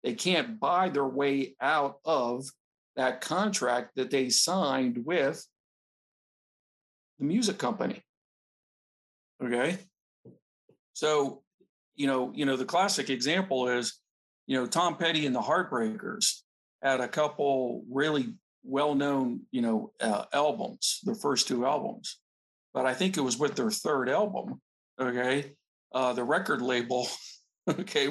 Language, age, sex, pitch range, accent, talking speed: English, 50-69, male, 130-155 Hz, American, 130 wpm